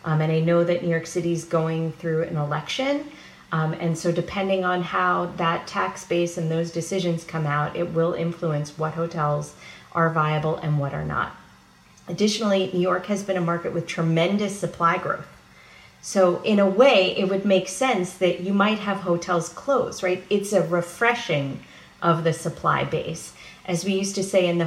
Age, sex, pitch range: 40-59, female, 165-195 Hz